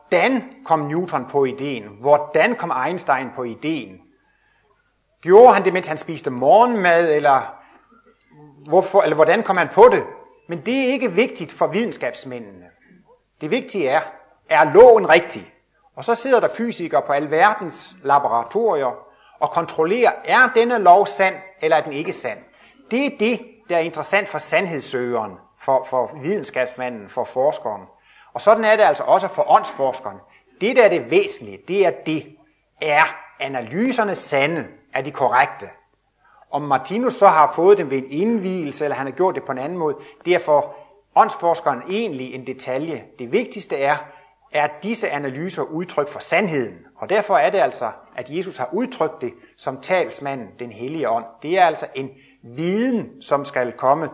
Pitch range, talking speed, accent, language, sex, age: 140-225 Hz, 165 wpm, native, Danish, male, 30-49